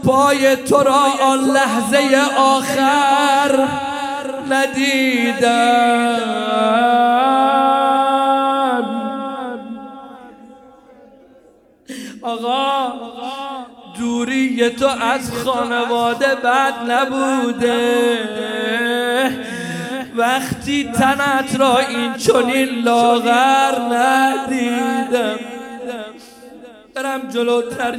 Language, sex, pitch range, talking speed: Arabic, male, 255-280 Hz, 50 wpm